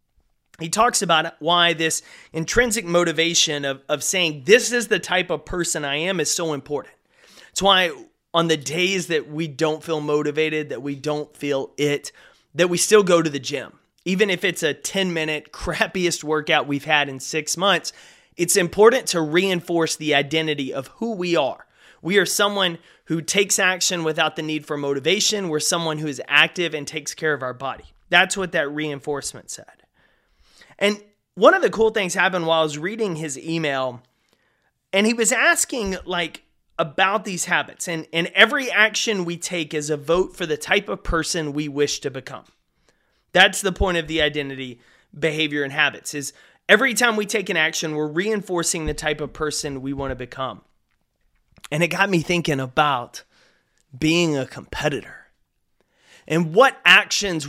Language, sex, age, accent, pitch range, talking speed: English, male, 30-49, American, 150-185 Hz, 175 wpm